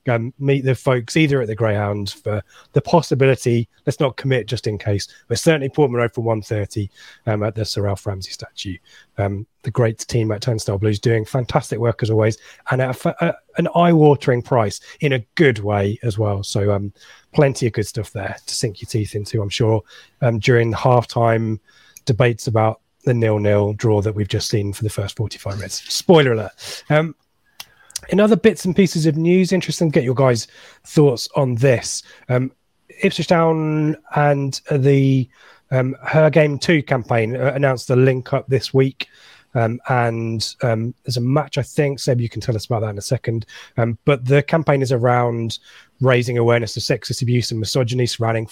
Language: English